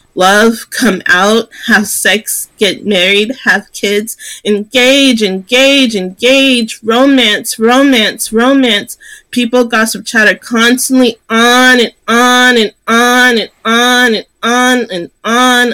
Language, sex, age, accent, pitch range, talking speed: English, female, 30-49, American, 205-245 Hz, 120 wpm